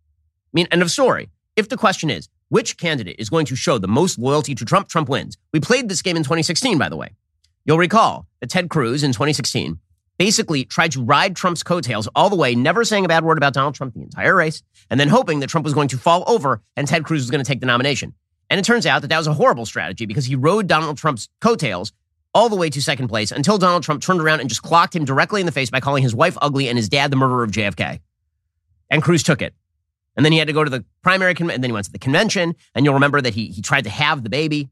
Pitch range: 115-165 Hz